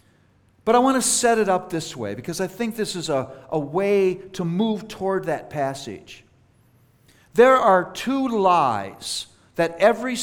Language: English